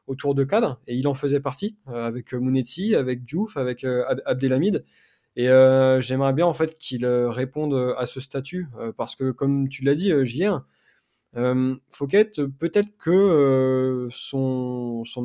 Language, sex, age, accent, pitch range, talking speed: French, male, 20-39, French, 125-145 Hz, 155 wpm